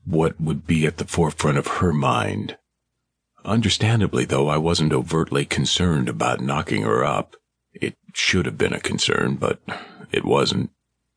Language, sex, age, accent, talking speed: English, male, 50-69, American, 150 wpm